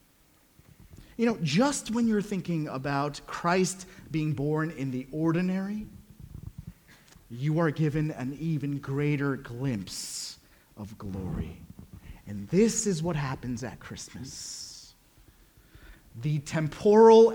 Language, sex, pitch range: English, male, 140-215 Hz